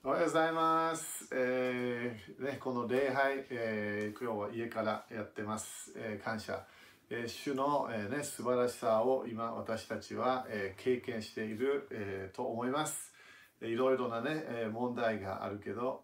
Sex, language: male, Japanese